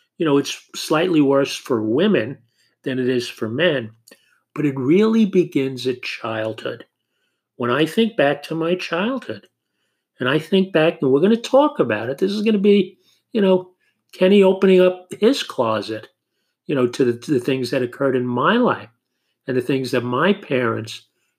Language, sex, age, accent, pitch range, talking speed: English, male, 50-69, American, 125-195 Hz, 180 wpm